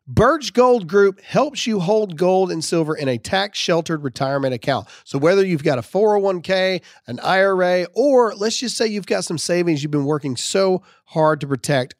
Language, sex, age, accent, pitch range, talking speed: English, male, 40-59, American, 135-190 Hz, 190 wpm